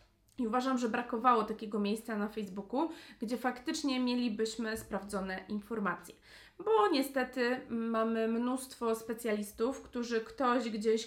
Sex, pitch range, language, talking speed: female, 215-250 Hz, Polish, 115 wpm